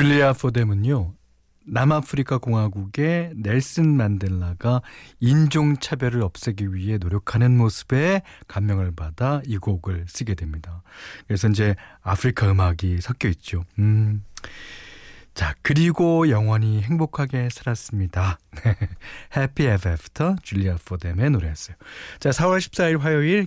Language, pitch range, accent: Korean, 95-145 Hz, native